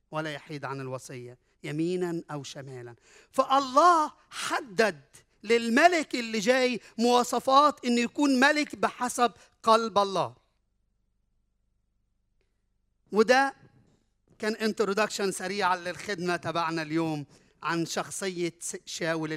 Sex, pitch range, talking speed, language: male, 165-235 Hz, 95 wpm, Arabic